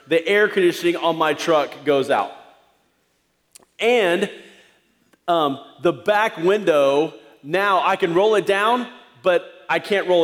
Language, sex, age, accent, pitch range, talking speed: English, male, 30-49, American, 165-210 Hz, 135 wpm